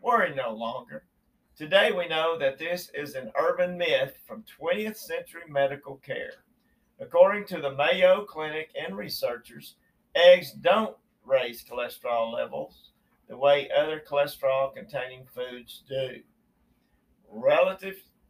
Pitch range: 145-195 Hz